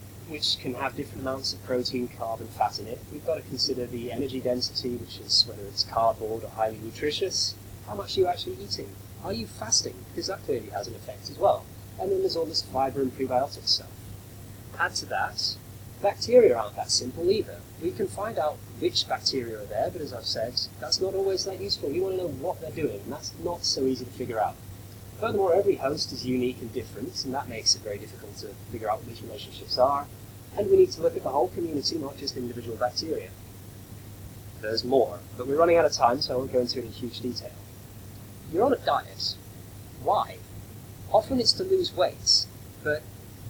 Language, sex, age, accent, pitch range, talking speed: English, male, 30-49, British, 100-135 Hz, 210 wpm